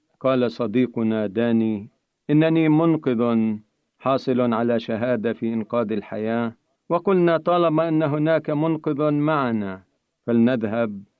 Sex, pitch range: male, 110-150 Hz